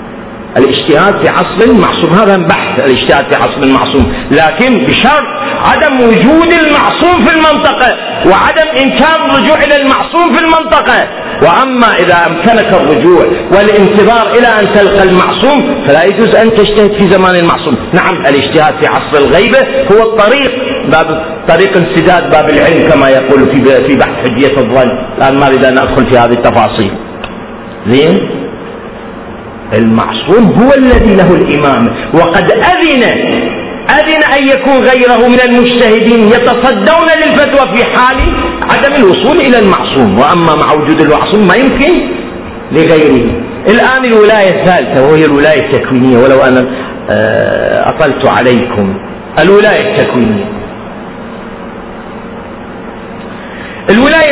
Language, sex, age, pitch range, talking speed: Arabic, male, 50-69, 170-265 Hz, 115 wpm